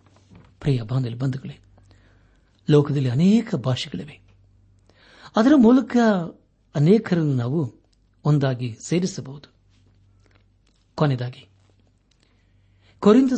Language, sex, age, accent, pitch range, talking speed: Kannada, male, 60-79, native, 100-165 Hz, 55 wpm